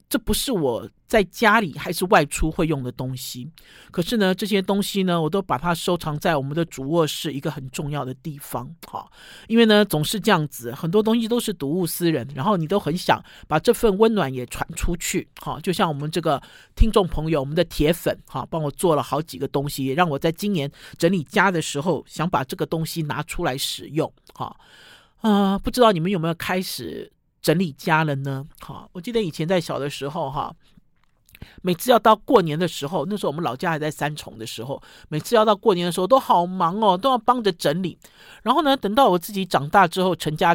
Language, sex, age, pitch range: Chinese, male, 50-69, 150-210 Hz